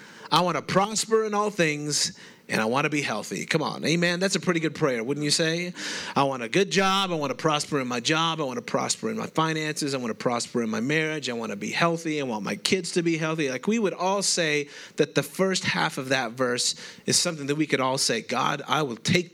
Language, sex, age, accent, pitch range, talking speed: English, male, 30-49, American, 140-180 Hz, 265 wpm